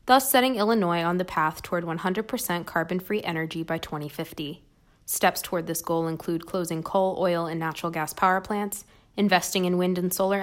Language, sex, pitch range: English, female, 160-195 Hz